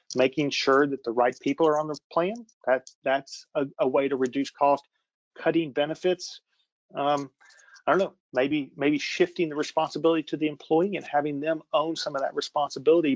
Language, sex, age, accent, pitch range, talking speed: English, male, 40-59, American, 120-140 Hz, 180 wpm